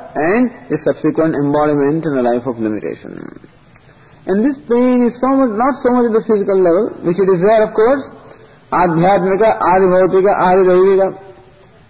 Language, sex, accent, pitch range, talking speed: English, male, Indian, 150-205 Hz, 155 wpm